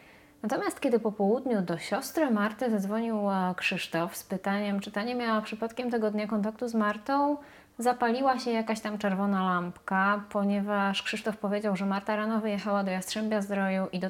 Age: 20-39